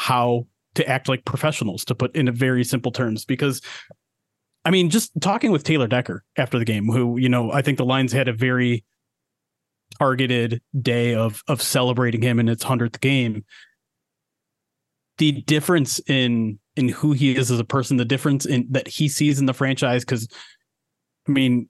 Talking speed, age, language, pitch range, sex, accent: 180 wpm, 30-49, English, 125-155 Hz, male, American